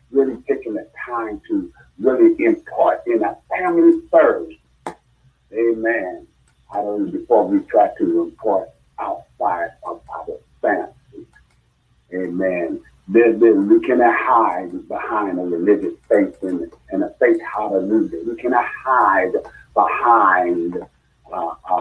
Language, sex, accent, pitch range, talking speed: English, male, American, 295-355 Hz, 115 wpm